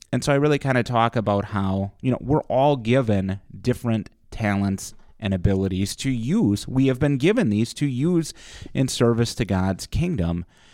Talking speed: 180 wpm